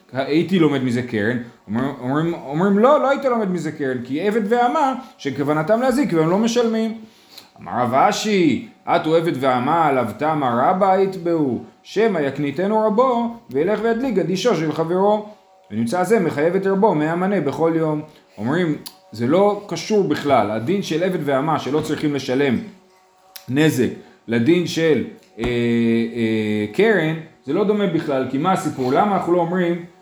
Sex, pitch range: male, 150-210 Hz